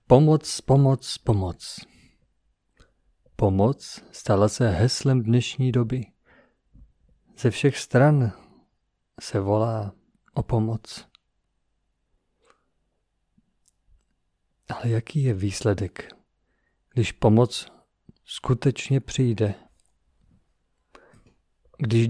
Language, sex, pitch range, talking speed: Czech, male, 100-135 Hz, 70 wpm